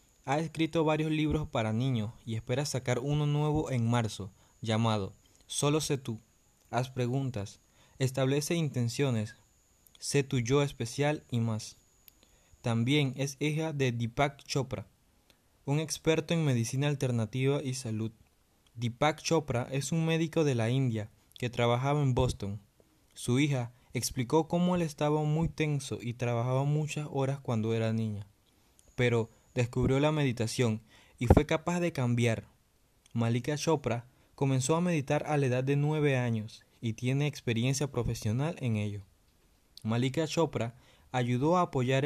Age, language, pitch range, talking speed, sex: 20-39, English, 115-145 Hz, 140 wpm, male